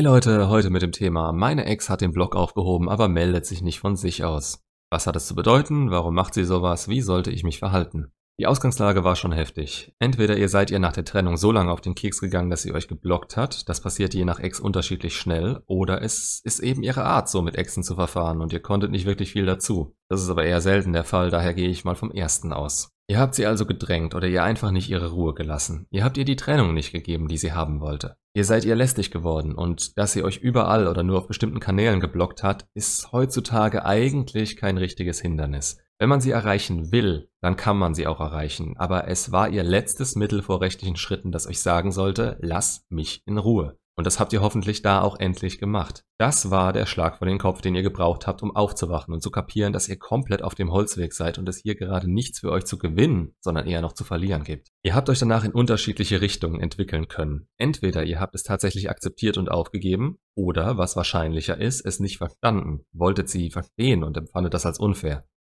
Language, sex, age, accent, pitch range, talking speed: German, male, 30-49, German, 85-105 Hz, 225 wpm